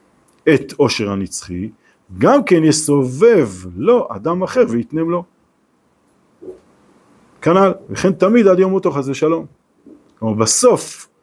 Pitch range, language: 120-175 Hz, Hebrew